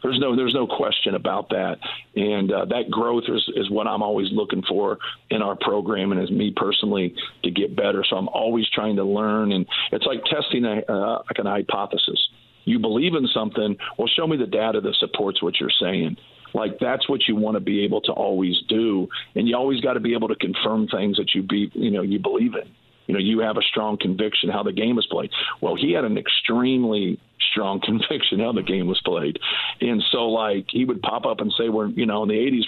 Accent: American